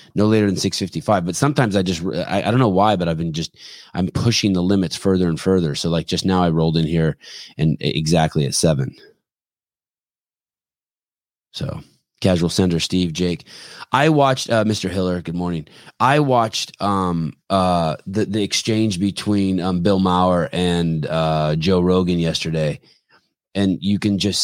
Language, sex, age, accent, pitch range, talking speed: English, male, 20-39, American, 80-95 Hz, 165 wpm